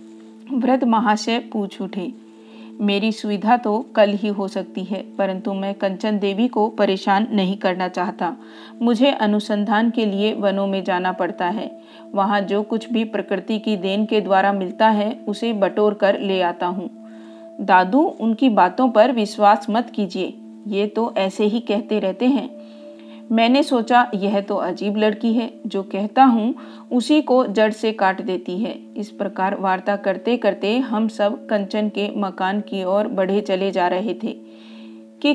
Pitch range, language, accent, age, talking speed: 185-220 Hz, Hindi, native, 40-59, 165 wpm